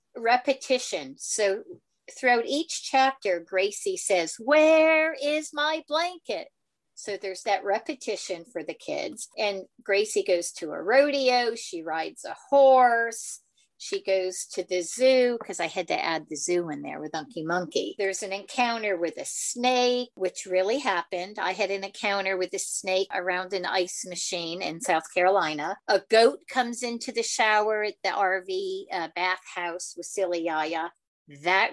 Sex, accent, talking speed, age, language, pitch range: female, American, 155 wpm, 50-69, English, 185-250 Hz